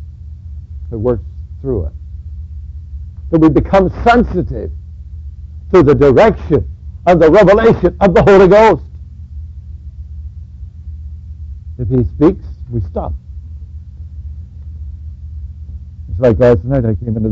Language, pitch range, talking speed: English, 80-125 Hz, 105 wpm